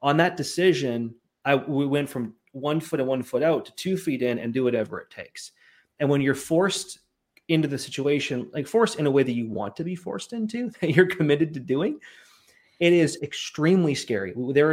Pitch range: 120-160 Hz